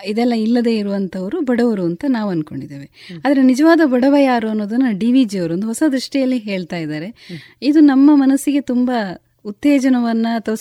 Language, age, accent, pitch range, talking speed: Kannada, 20-39, native, 180-275 Hz, 140 wpm